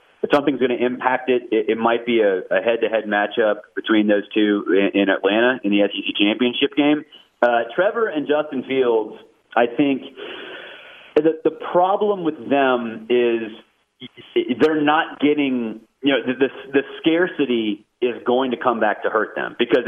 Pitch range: 110-155 Hz